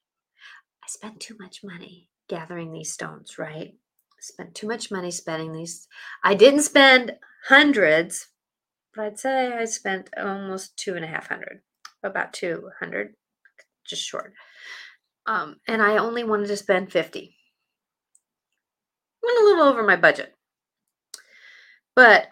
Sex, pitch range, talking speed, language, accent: female, 175-230 Hz, 130 wpm, English, American